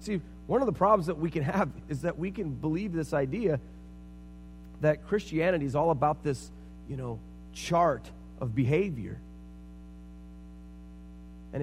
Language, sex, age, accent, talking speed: English, male, 30-49, American, 145 wpm